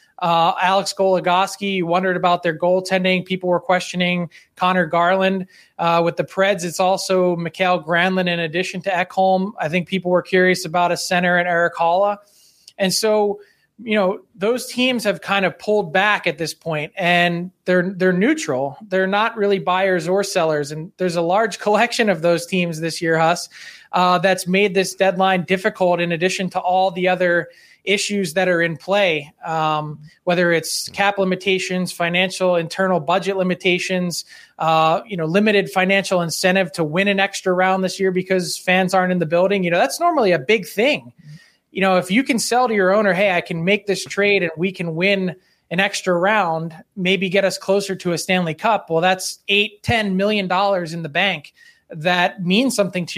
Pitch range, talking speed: 175-195 Hz, 185 wpm